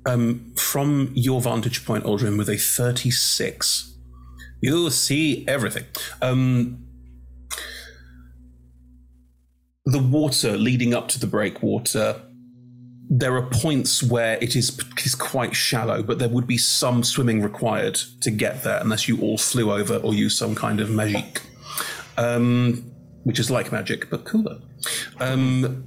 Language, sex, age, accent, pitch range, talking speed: English, male, 30-49, British, 105-130 Hz, 135 wpm